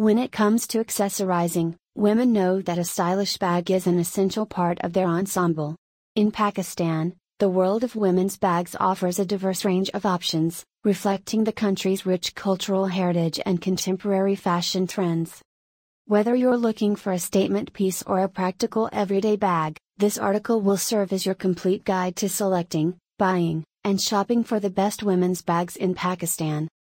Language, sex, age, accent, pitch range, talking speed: English, female, 30-49, American, 175-205 Hz, 165 wpm